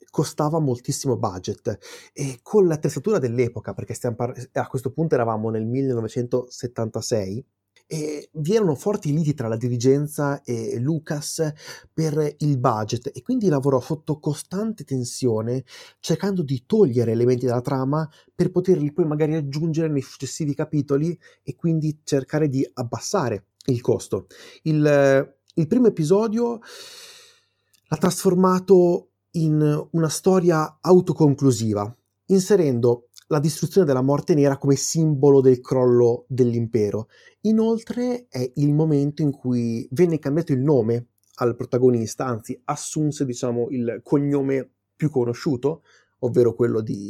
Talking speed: 125 wpm